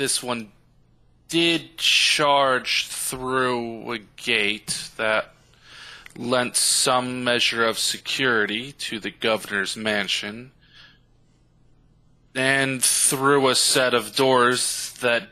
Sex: male